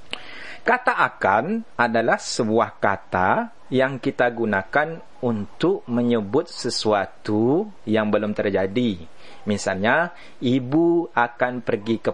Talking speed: 95 wpm